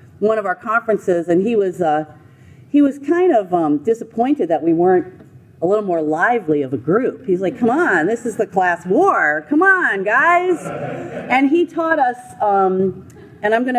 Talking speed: 190 wpm